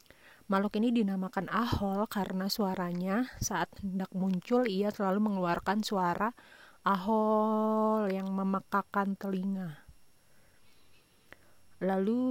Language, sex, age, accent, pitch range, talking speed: Indonesian, female, 30-49, native, 180-205 Hz, 90 wpm